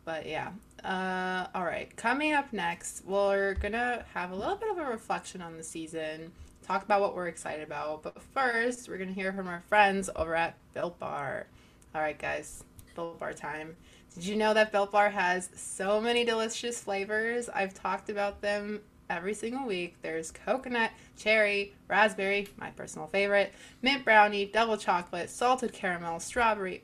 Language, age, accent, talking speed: English, 20-39, American, 175 wpm